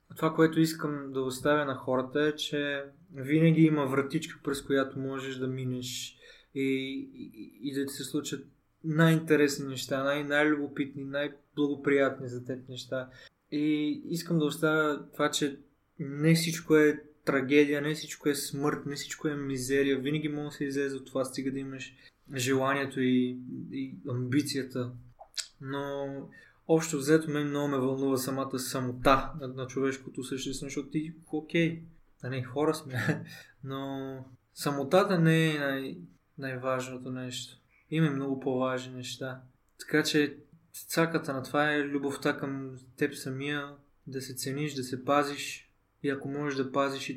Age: 20-39